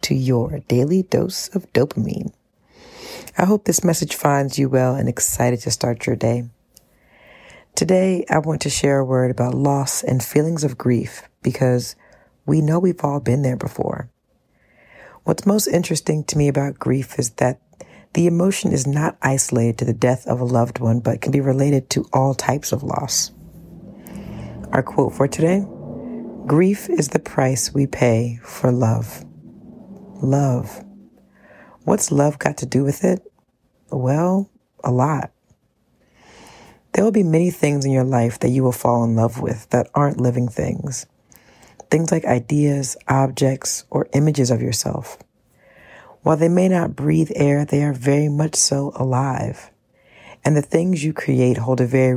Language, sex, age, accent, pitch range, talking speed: English, female, 40-59, American, 125-160 Hz, 160 wpm